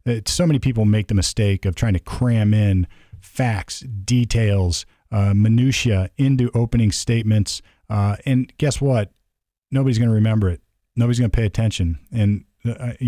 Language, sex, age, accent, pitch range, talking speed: English, male, 40-59, American, 95-120 Hz, 160 wpm